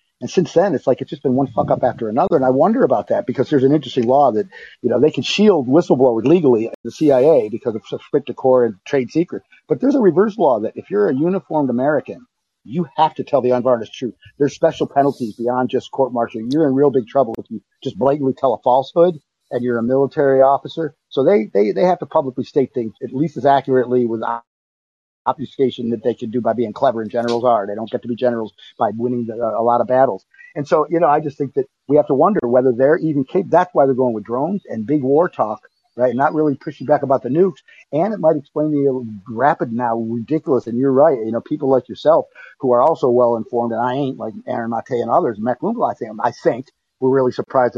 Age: 50-69